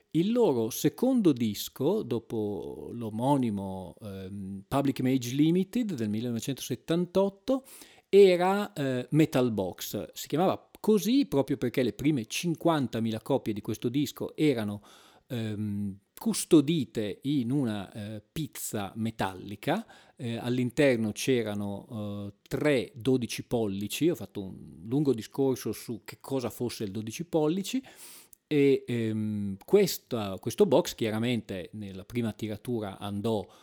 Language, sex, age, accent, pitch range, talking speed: Italian, male, 40-59, native, 110-145 Hz, 115 wpm